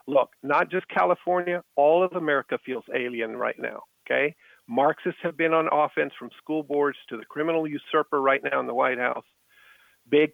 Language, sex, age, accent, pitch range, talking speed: English, male, 50-69, American, 135-180 Hz, 180 wpm